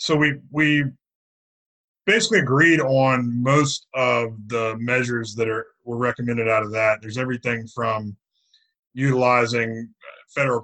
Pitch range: 115-130 Hz